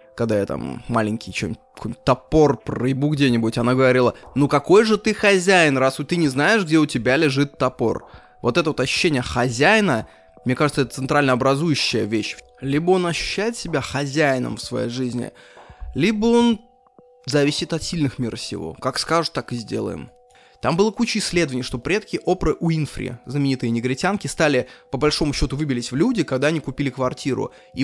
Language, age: Russian, 20-39